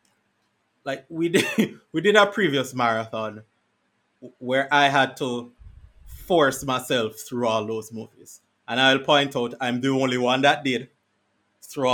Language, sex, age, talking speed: English, male, 20-39, 145 wpm